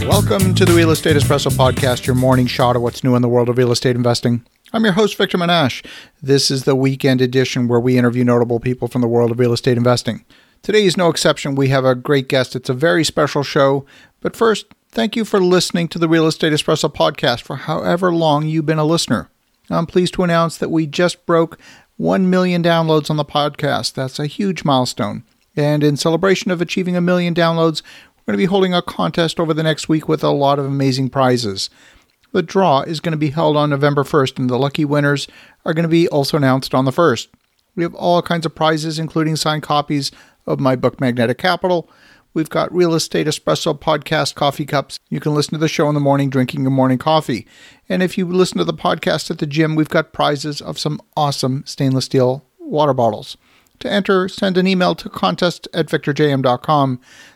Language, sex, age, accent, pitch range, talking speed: English, male, 40-59, American, 130-170 Hz, 215 wpm